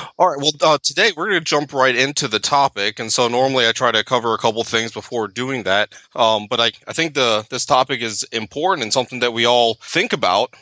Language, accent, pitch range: English, American, 110-130 Hz